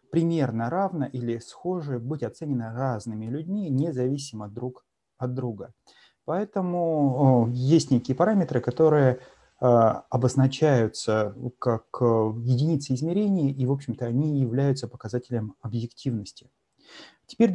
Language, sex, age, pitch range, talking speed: Russian, male, 30-49, 125-160 Hz, 100 wpm